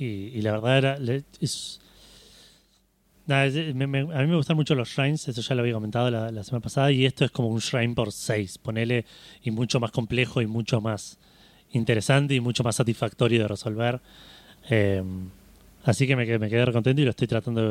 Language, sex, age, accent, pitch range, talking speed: Spanish, male, 30-49, Argentinian, 110-135 Hz, 205 wpm